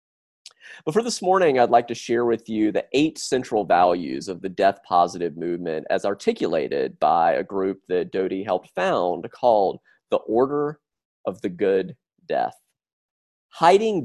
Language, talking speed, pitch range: English, 155 wpm, 100-165 Hz